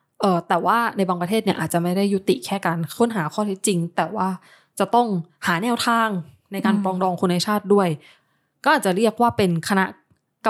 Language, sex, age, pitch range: Thai, female, 20-39, 170-210 Hz